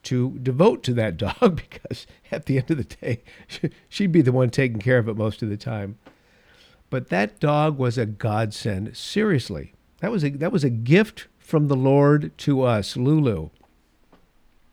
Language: English